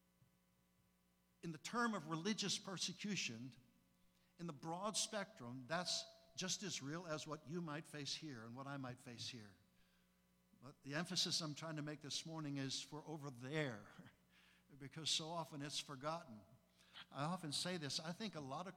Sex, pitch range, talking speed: male, 115-170 Hz, 170 wpm